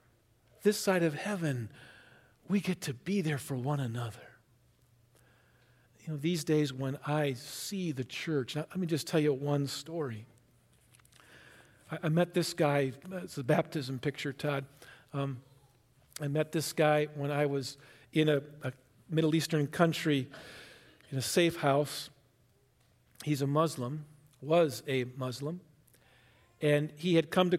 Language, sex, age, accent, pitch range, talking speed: English, male, 50-69, American, 135-170 Hz, 145 wpm